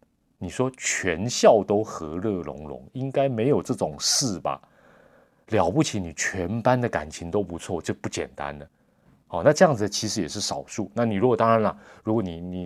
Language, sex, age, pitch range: Chinese, male, 30-49, 90-115 Hz